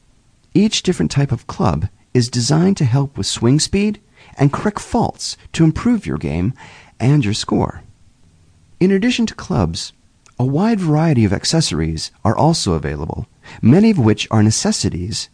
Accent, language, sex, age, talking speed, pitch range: American, English, male, 40-59, 155 wpm, 100-155 Hz